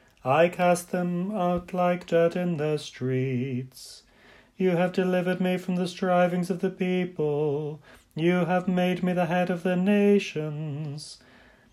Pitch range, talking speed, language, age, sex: 150-185 Hz, 145 wpm, English, 30-49, male